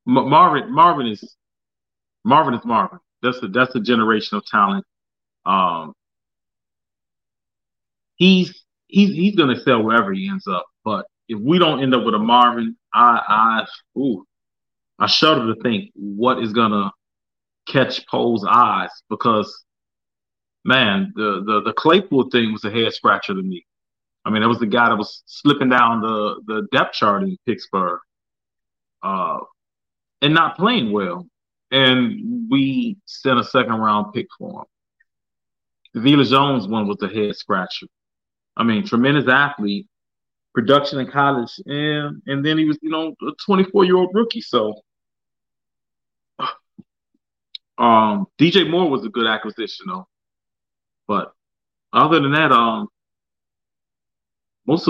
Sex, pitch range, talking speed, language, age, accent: male, 110-160 Hz, 140 wpm, English, 30-49, American